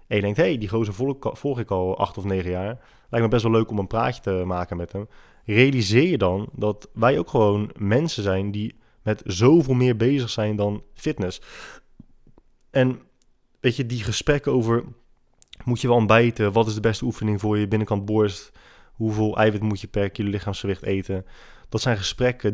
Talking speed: 195 wpm